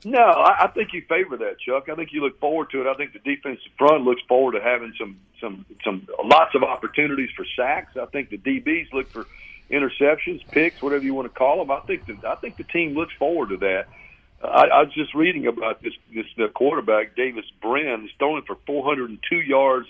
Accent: American